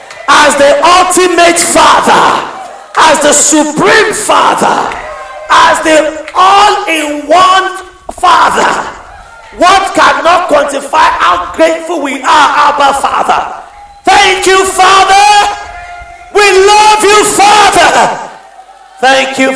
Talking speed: 100 wpm